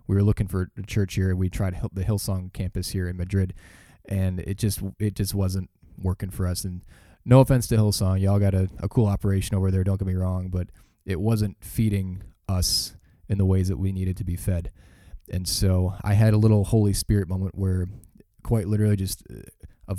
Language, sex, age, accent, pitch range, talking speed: English, male, 20-39, American, 95-105 Hz, 210 wpm